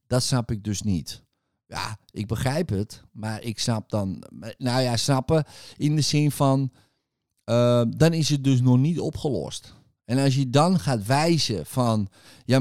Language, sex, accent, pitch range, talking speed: Dutch, male, Dutch, 105-135 Hz, 170 wpm